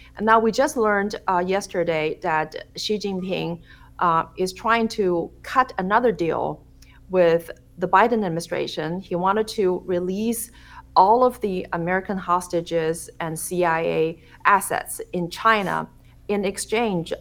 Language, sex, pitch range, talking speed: English, female, 165-195 Hz, 130 wpm